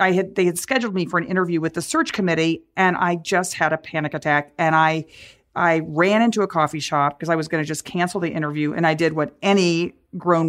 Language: English